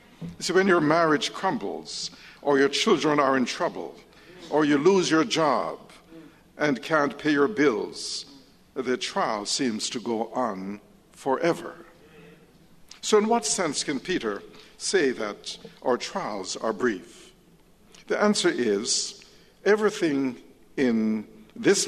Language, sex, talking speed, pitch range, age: English, male, 130 wpm, 115-175 Hz, 50-69